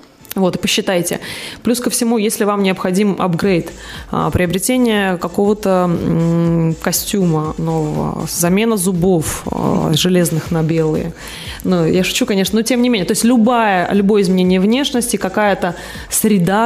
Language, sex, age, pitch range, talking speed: Russian, female, 20-39, 175-215 Hz, 135 wpm